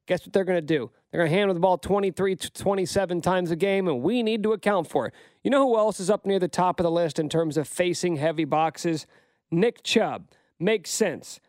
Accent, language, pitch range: American, English, 190-250 Hz